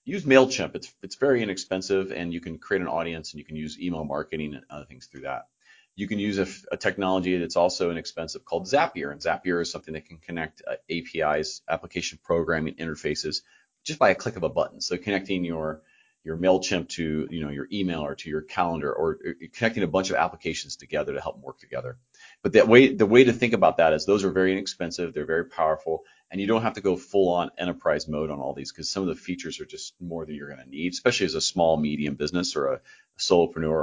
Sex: male